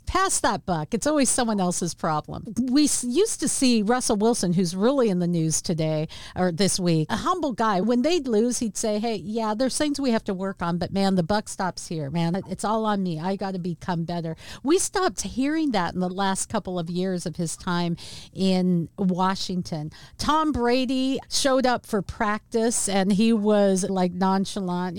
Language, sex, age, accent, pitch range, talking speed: English, female, 50-69, American, 180-235 Hz, 195 wpm